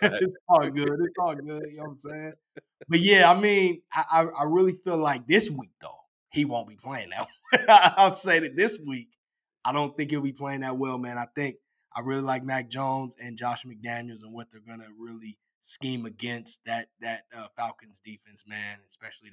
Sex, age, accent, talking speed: male, 20-39, American, 205 wpm